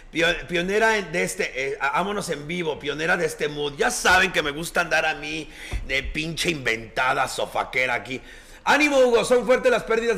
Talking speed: 175 wpm